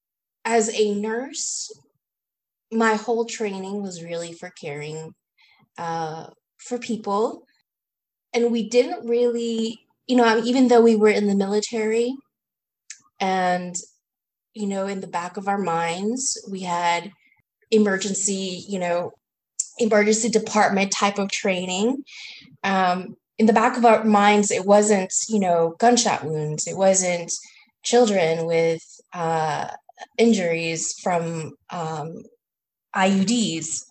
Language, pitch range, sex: English, 185-230 Hz, female